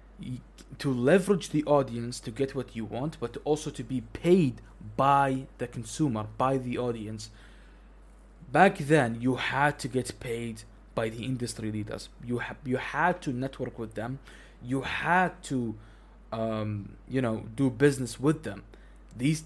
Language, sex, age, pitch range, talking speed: Arabic, male, 20-39, 115-150 Hz, 155 wpm